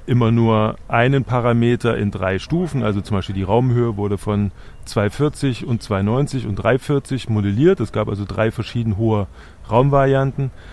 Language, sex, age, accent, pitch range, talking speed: German, male, 30-49, German, 105-125 Hz, 145 wpm